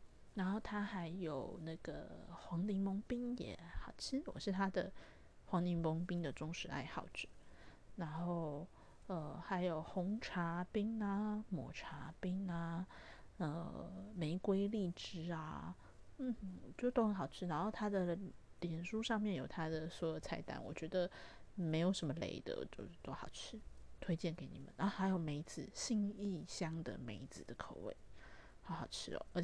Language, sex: Chinese, female